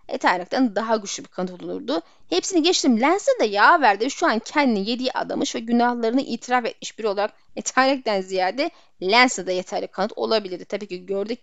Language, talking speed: Turkish, 175 wpm